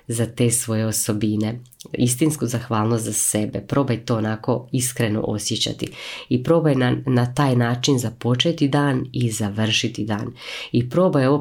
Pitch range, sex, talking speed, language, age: 115-135 Hz, female, 140 wpm, Croatian, 20-39